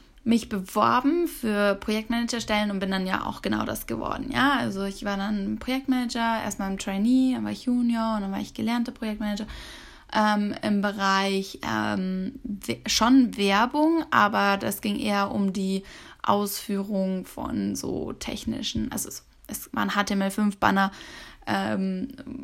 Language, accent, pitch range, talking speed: German, German, 200-240 Hz, 145 wpm